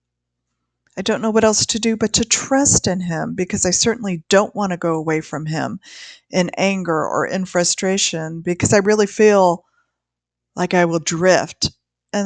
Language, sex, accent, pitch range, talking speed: English, female, American, 125-200 Hz, 175 wpm